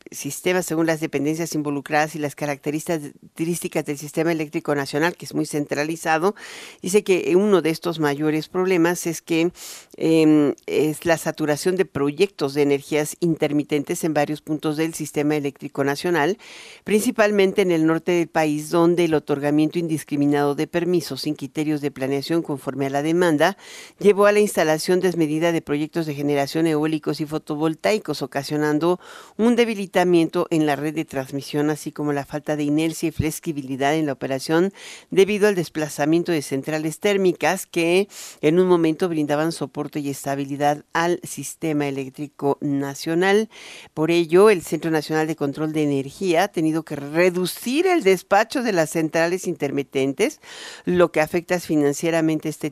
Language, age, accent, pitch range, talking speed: Spanish, 50-69, Mexican, 150-175 Hz, 155 wpm